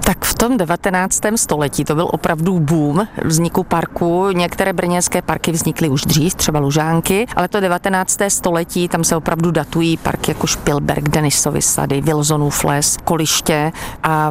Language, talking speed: Czech, 150 wpm